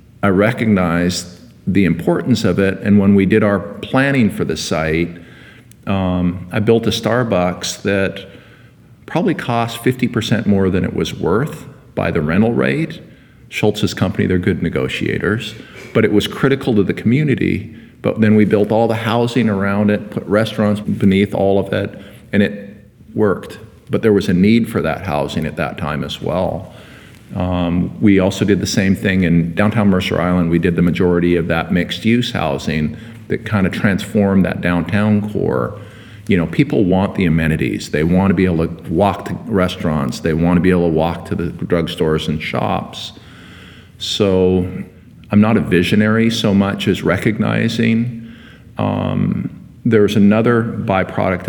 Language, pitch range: English, 90-110 Hz